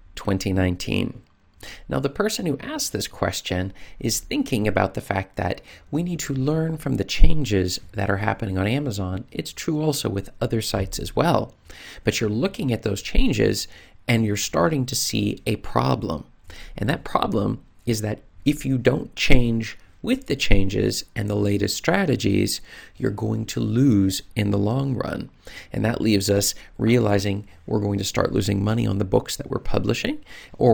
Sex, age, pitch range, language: male, 40-59, 95-130 Hz, English